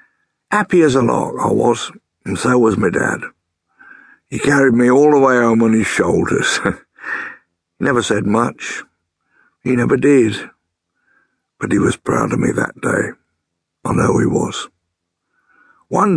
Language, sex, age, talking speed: English, male, 60-79, 150 wpm